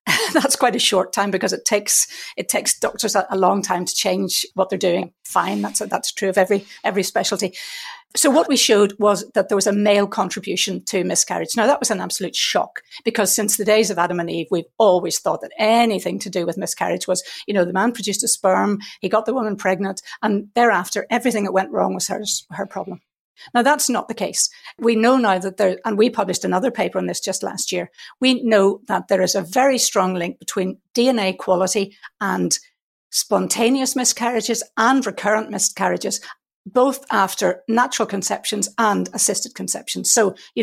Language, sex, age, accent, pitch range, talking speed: English, female, 50-69, British, 190-230 Hz, 200 wpm